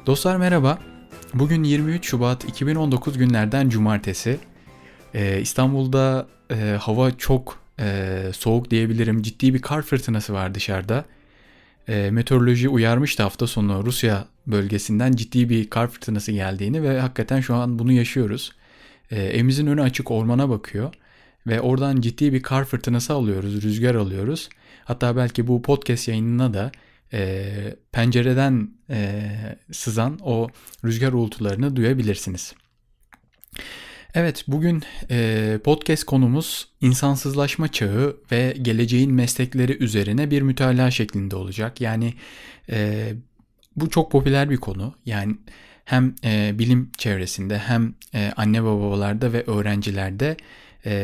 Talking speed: 120 wpm